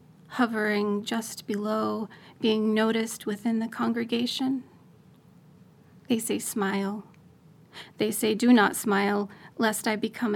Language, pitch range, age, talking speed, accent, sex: English, 205-235 Hz, 30-49, 110 wpm, American, female